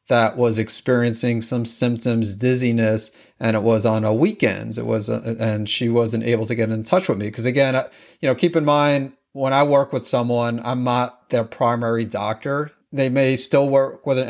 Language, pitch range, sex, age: English, 115-140 Hz, male, 40-59